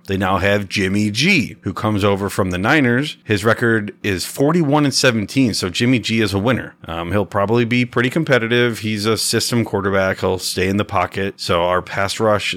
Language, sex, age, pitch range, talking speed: English, male, 30-49, 95-120 Hz, 200 wpm